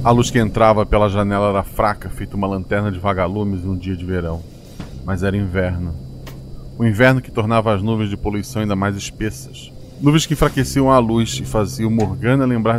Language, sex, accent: Portuguese, male, Brazilian